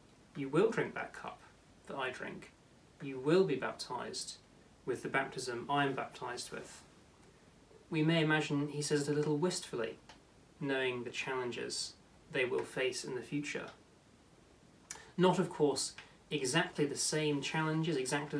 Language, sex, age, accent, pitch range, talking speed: English, male, 30-49, British, 130-155 Hz, 145 wpm